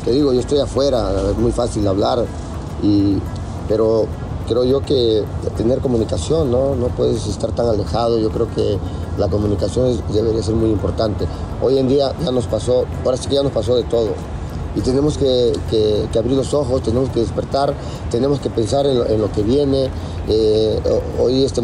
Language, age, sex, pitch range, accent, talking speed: English, 40-59, male, 100-130 Hz, Mexican, 180 wpm